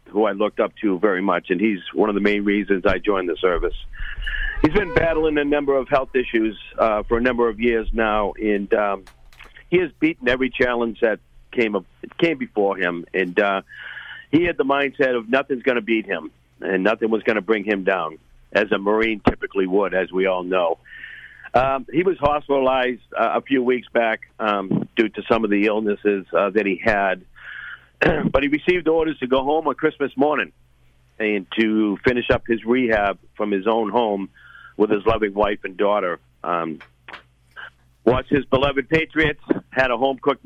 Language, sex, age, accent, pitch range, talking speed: English, male, 50-69, American, 105-130 Hz, 190 wpm